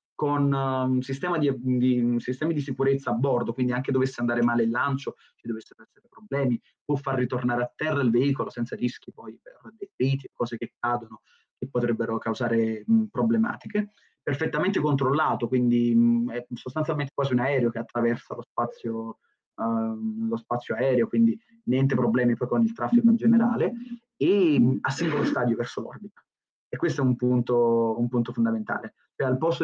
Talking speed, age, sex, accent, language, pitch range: 180 wpm, 20-39, male, native, Italian, 120-145 Hz